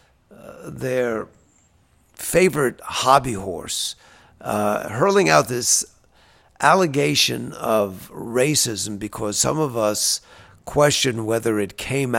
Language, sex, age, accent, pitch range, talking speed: English, male, 50-69, American, 105-140 Hz, 95 wpm